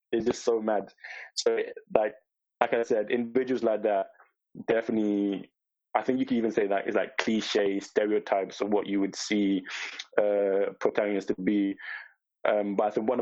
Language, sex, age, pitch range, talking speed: English, male, 20-39, 105-125 Hz, 175 wpm